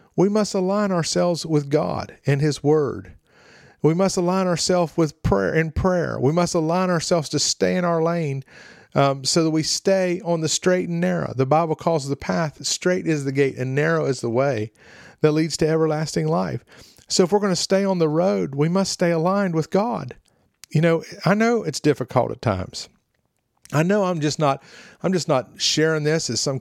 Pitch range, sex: 140-175 Hz, male